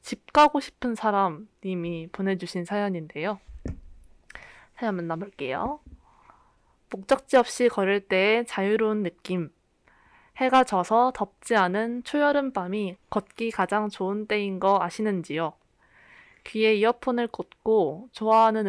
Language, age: Korean, 20-39